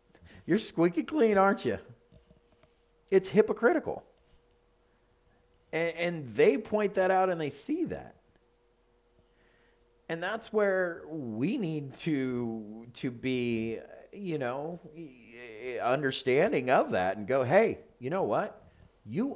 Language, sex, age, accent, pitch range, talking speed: English, male, 40-59, American, 120-180 Hz, 115 wpm